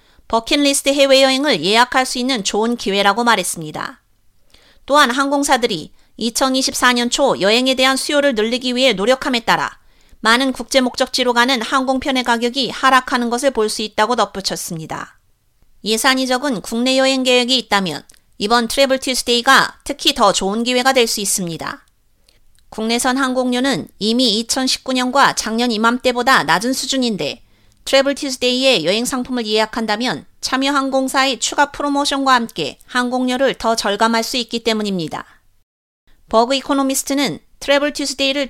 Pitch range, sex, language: 220-265 Hz, female, Korean